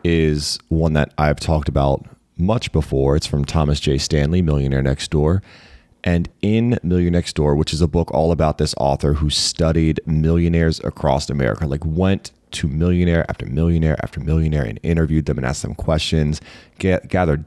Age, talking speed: 30-49, 170 wpm